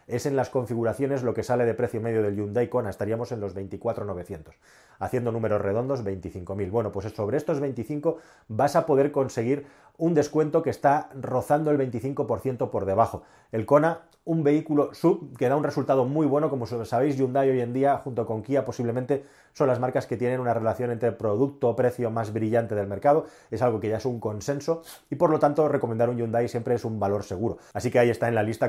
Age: 30-49